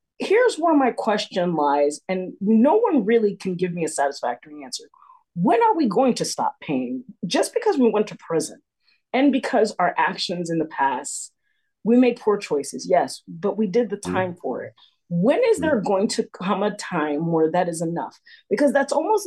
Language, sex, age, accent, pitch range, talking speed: English, female, 40-59, American, 180-275 Hz, 195 wpm